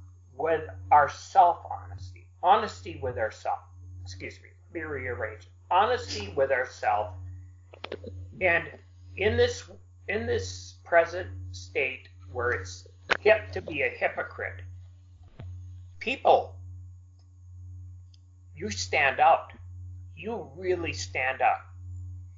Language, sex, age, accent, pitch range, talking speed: English, male, 60-79, American, 90-95 Hz, 95 wpm